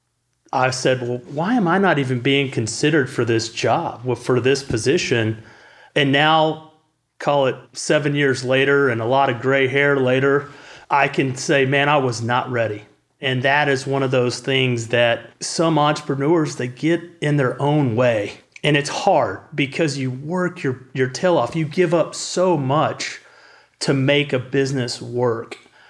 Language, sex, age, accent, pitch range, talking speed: English, male, 30-49, American, 125-150 Hz, 170 wpm